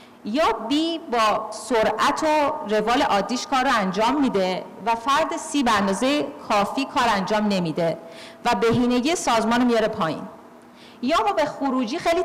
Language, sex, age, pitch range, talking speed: Persian, female, 40-59, 210-275 Hz, 150 wpm